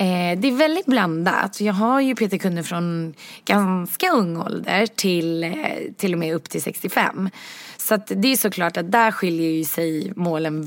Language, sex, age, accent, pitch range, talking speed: Swedish, female, 20-39, native, 170-220 Hz, 170 wpm